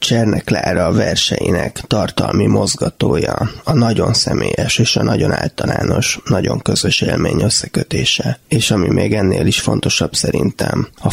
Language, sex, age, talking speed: Hungarian, male, 20-39, 130 wpm